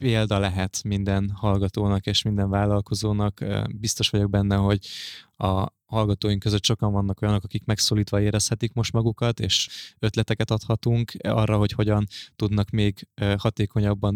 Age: 20-39